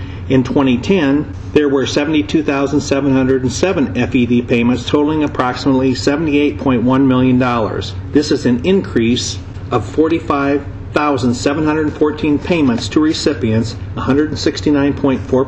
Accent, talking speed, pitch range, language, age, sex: American, 90 wpm, 120-145 Hz, English, 50-69, male